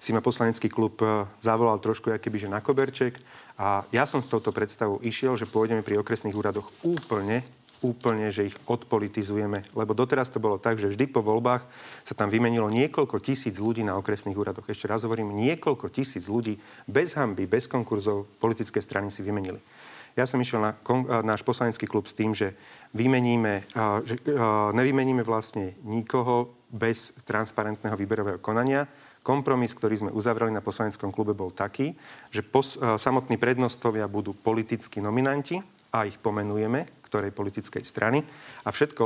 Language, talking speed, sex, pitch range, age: Slovak, 165 wpm, male, 105-125 Hz, 40-59